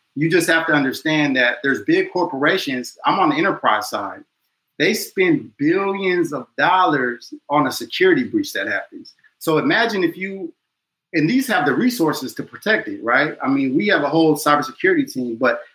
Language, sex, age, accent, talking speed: English, male, 30-49, American, 180 wpm